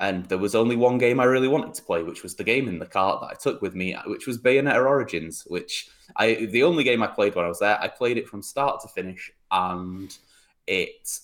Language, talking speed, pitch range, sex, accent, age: English, 250 wpm, 90-115 Hz, male, British, 20-39